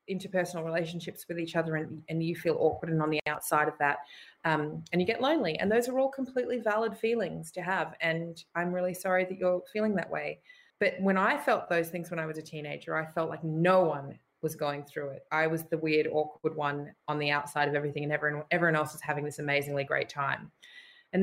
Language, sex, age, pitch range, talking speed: English, female, 20-39, 160-200 Hz, 230 wpm